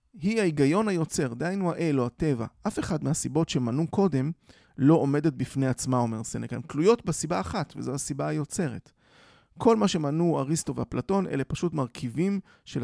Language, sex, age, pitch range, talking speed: Hebrew, male, 30-49, 125-165 Hz, 160 wpm